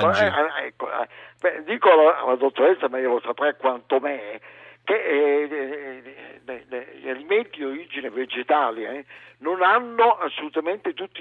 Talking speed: 100 wpm